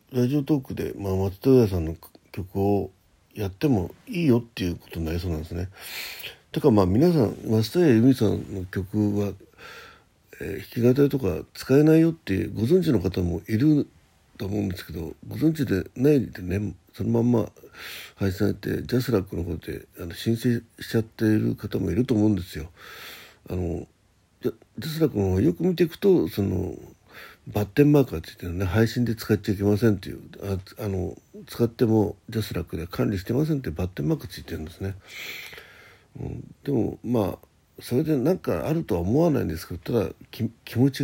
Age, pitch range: 60-79, 90-120 Hz